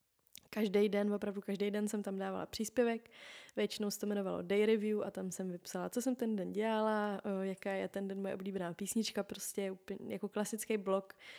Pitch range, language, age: 195-215 Hz, Czech, 20-39